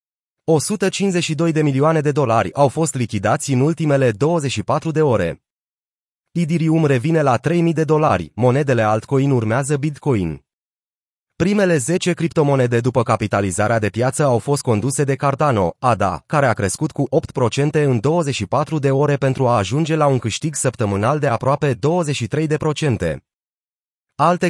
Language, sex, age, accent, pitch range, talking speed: Romanian, male, 30-49, native, 120-155 Hz, 135 wpm